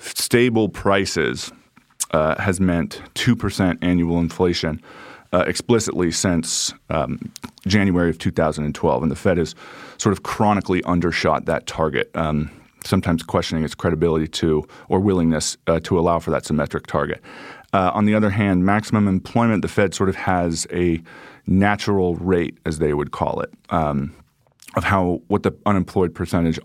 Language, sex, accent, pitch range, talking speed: English, male, American, 85-100 Hz, 150 wpm